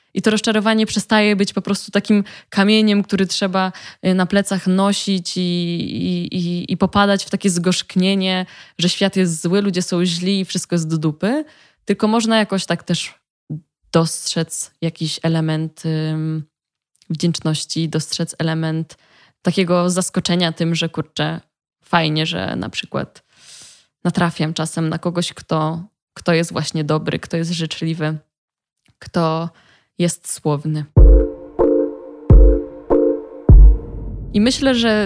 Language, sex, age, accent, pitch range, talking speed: Polish, female, 20-39, native, 165-195 Hz, 120 wpm